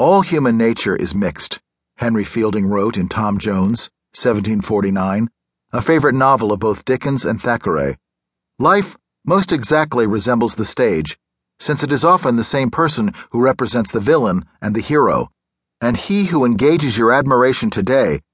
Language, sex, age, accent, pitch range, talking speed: English, male, 40-59, American, 110-150 Hz, 155 wpm